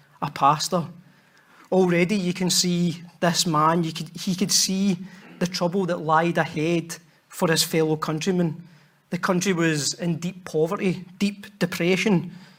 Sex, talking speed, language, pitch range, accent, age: male, 135 wpm, English, 160-190 Hz, British, 40-59